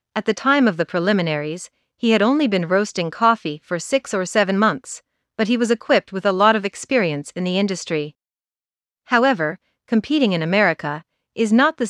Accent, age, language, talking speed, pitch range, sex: American, 40-59, English, 180 wpm, 175-220 Hz, female